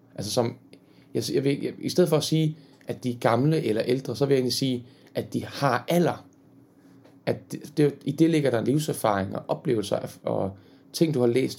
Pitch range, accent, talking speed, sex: 120-160 Hz, native, 210 wpm, male